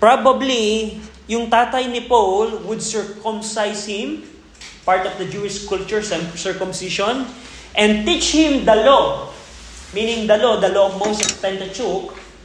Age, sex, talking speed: 20-39, male, 130 wpm